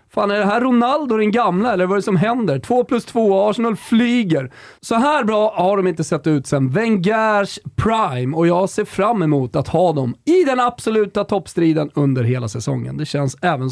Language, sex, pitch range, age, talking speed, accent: Swedish, male, 160-220 Hz, 30-49, 200 wpm, native